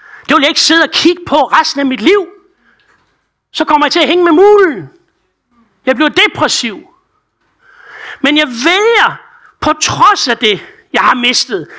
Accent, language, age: native, Danish, 60-79